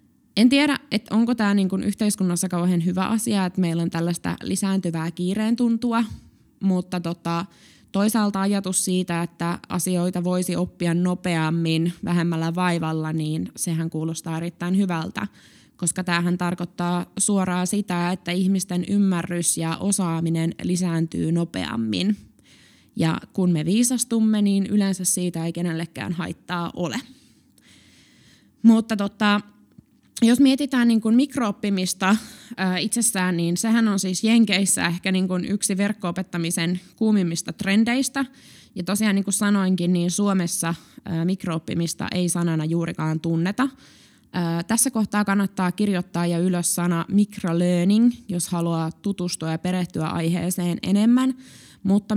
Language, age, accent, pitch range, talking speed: Finnish, 20-39, native, 170-205 Hz, 120 wpm